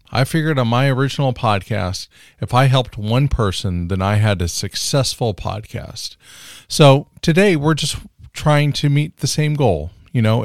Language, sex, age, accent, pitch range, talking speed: English, male, 40-59, American, 105-145 Hz, 165 wpm